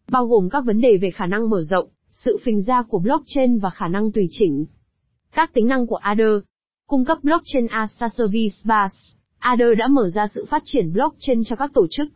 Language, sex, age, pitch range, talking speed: Vietnamese, female, 20-39, 205-260 Hz, 205 wpm